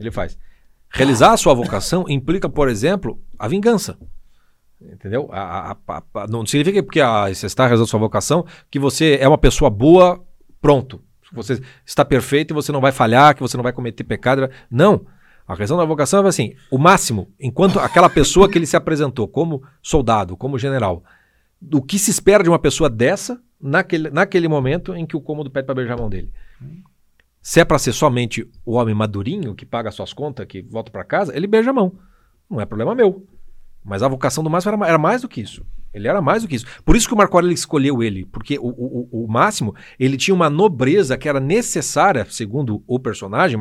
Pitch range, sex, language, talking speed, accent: 115-170 Hz, male, Portuguese, 200 wpm, Brazilian